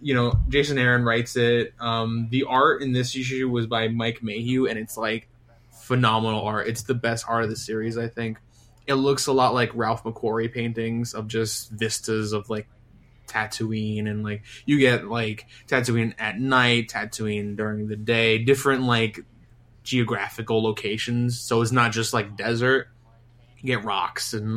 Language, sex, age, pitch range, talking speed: English, male, 20-39, 110-120 Hz, 170 wpm